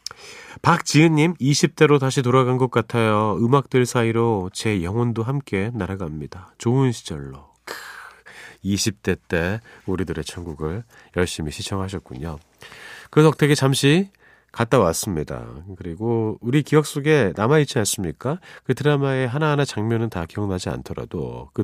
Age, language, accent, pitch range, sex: 40-59, Korean, native, 95-150 Hz, male